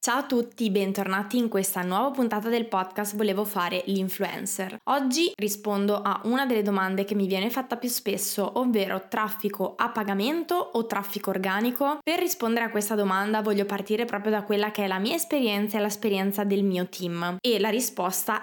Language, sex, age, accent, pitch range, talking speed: Italian, female, 20-39, native, 200-230 Hz, 180 wpm